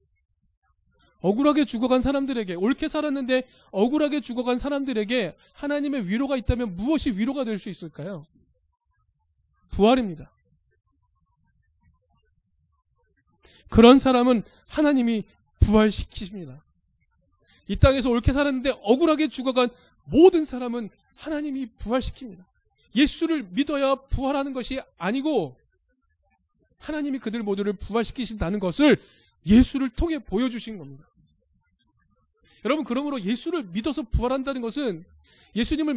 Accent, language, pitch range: native, Korean, 160-270 Hz